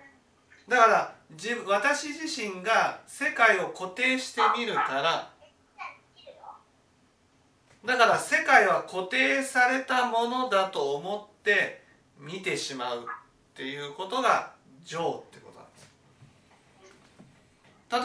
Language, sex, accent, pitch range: Japanese, male, native, 195-295 Hz